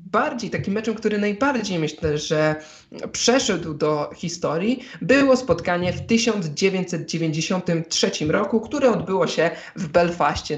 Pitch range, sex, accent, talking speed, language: 160-200 Hz, male, native, 115 wpm, Polish